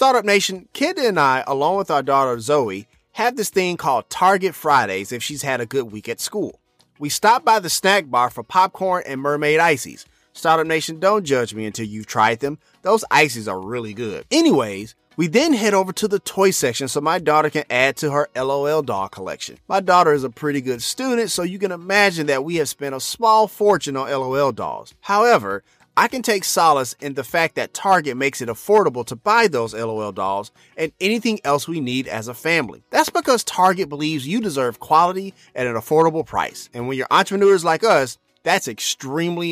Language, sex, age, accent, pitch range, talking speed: English, male, 30-49, American, 130-195 Hz, 205 wpm